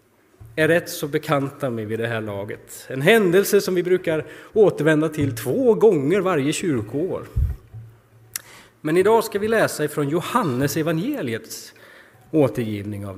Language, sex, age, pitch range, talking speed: Swedish, male, 30-49, 120-180 Hz, 135 wpm